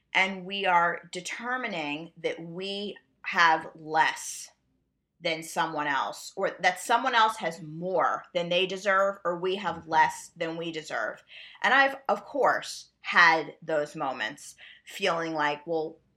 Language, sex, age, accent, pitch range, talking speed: English, female, 30-49, American, 155-185 Hz, 135 wpm